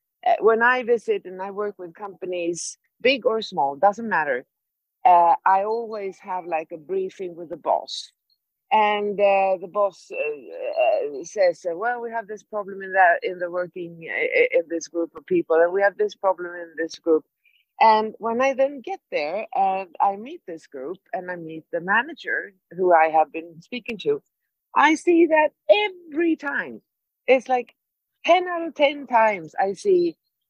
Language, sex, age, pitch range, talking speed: Swedish, female, 50-69, 185-305 Hz, 175 wpm